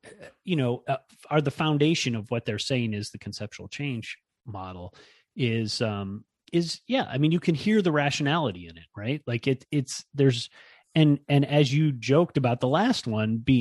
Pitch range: 105-145 Hz